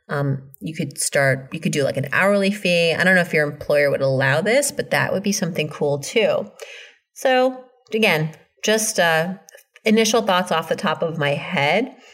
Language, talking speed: English, 195 wpm